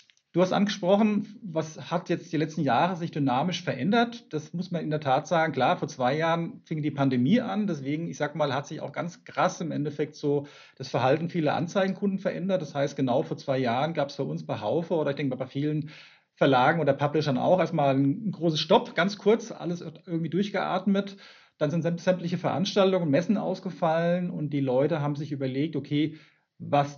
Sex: male